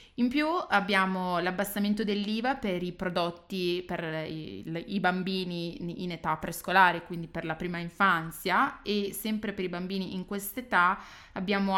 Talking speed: 140 wpm